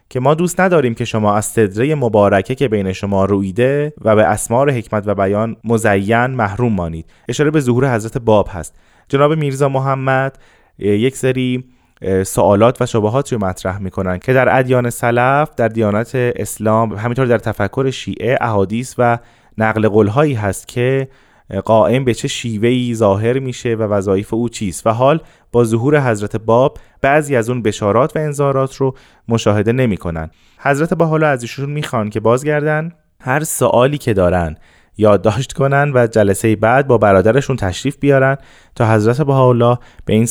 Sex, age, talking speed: male, 20-39, 160 wpm